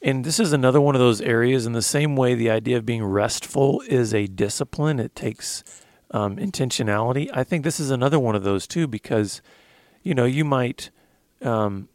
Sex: male